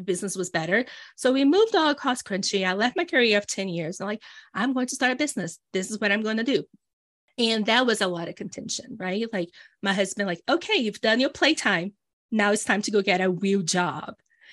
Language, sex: English, female